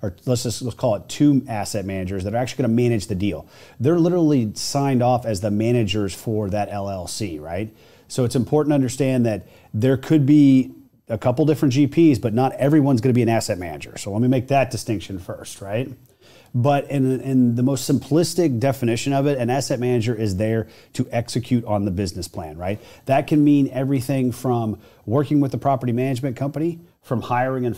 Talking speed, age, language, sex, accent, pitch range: 195 wpm, 30-49, English, male, American, 115-140 Hz